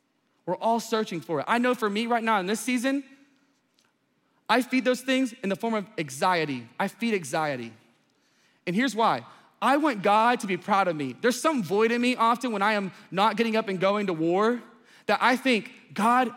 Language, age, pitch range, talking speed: English, 20-39, 195-240 Hz, 210 wpm